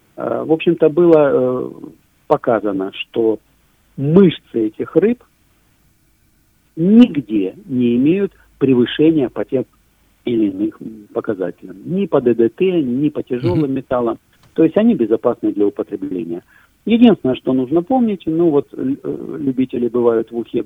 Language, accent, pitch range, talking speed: Russian, native, 115-195 Hz, 115 wpm